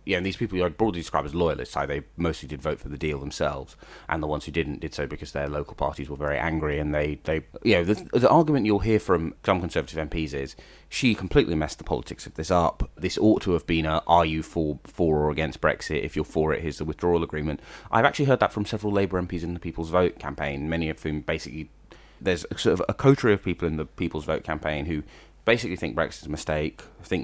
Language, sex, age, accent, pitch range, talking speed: English, male, 30-49, British, 75-90 Hz, 250 wpm